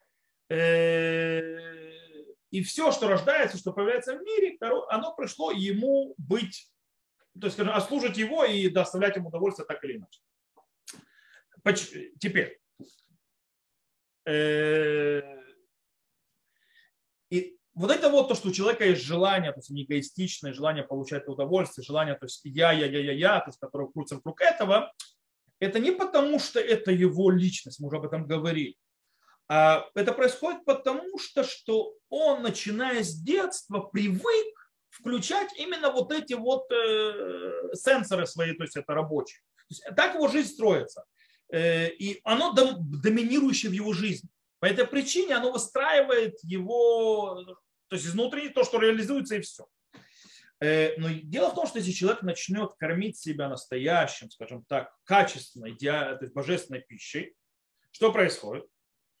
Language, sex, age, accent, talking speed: Russian, male, 30-49, native, 135 wpm